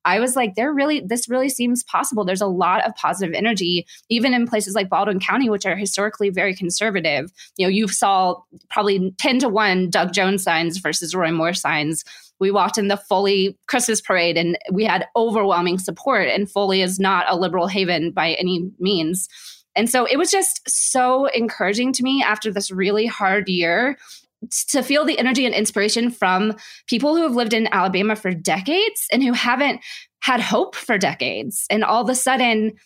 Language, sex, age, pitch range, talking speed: English, female, 20-39, 195-245 Hz, 190 wpm